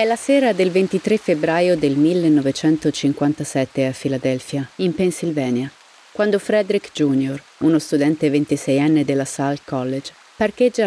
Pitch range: 140-180 Hz